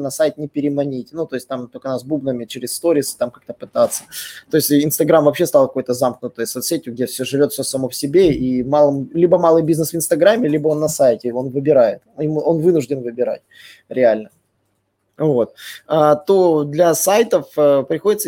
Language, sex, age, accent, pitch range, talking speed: Russian, male, 20-39, native, 135-175 Hz, 175 wpm